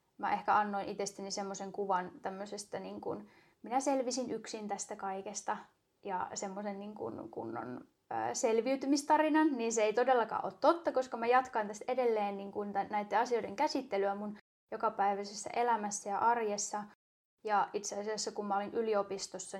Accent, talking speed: native, 145 wpm